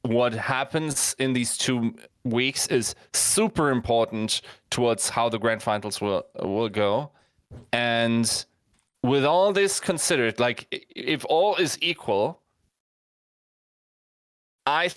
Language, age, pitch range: English, 20-39, 110-135 Hz